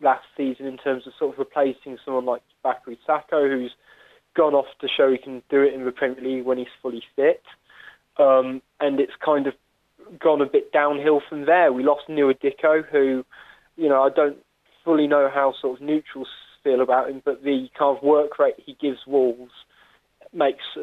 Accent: British